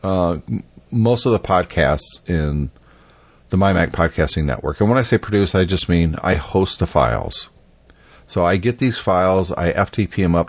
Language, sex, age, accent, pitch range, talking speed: English, male, 40-59, American, 80-105 Hz, 175 wpm